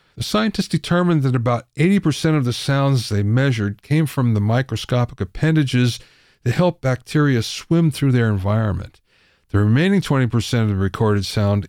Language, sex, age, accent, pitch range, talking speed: English, male, 50-69, American, 105-145 Hz, 155 wpm